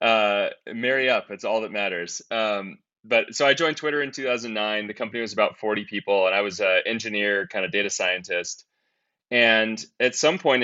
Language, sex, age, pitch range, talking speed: English, male, 20-39, 100-115 Hz, 190 wpm